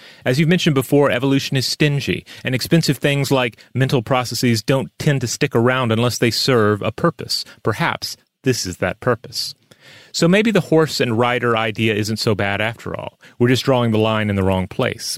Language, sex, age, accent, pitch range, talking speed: English, male, 30-49, American, 100-125 Hz, 195 wpm